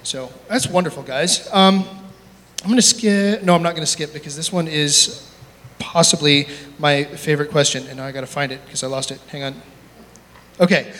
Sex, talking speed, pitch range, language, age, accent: male, 180 wpm, 140-170 Hz, English, 30-49, American